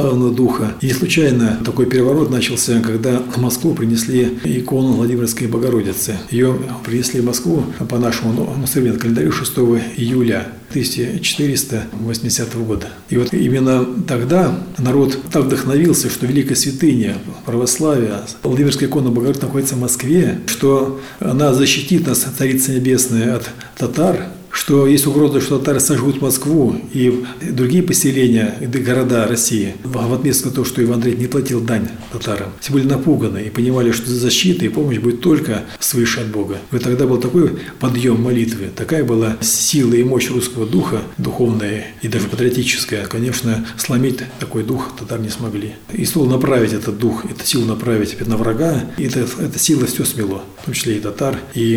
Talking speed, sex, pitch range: 160 wpm, male, 115-135 Hz